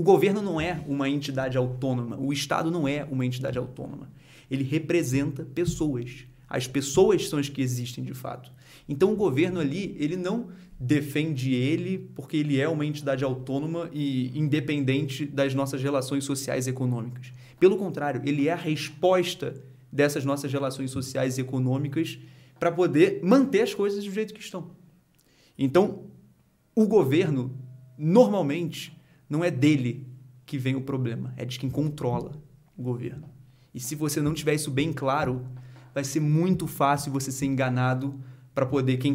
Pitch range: 130-160 Hz